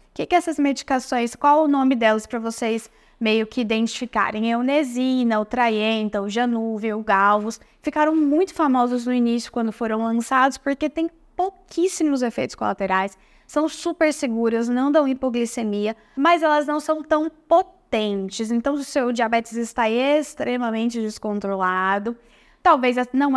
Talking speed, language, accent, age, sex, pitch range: 145 wpm, Portuguese, Brazilian, 10-29, female, 215-260 Hz